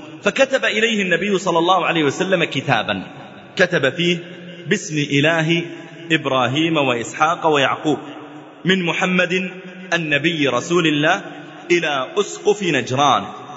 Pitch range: 150-185 Hz